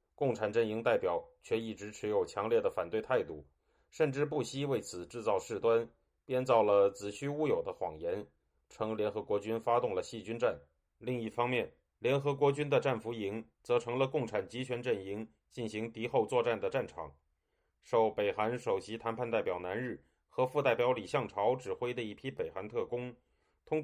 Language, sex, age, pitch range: Chinese, male, 30-49, 110-140 Hz